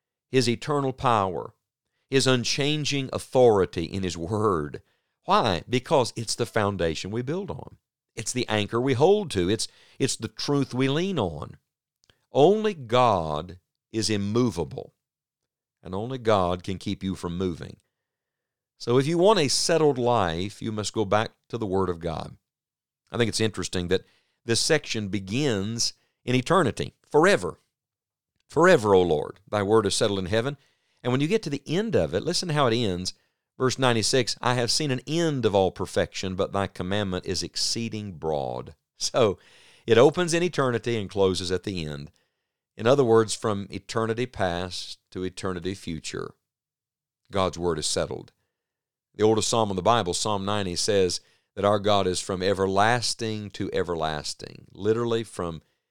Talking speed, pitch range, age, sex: 160 wpm, 95-125 Hz, 50-69, male